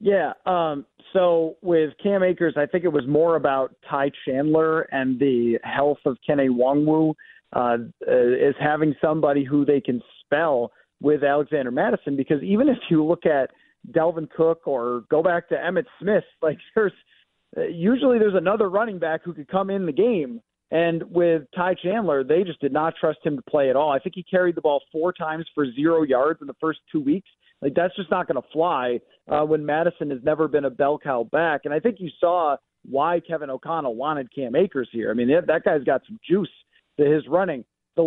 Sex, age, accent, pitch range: male, 40-59, American, 145-180 Hz